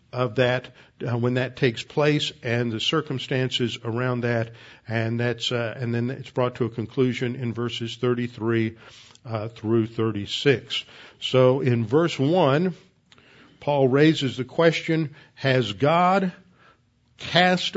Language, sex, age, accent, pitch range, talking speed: English, male, 50-69, American, 125-150 Hz, 130 wpm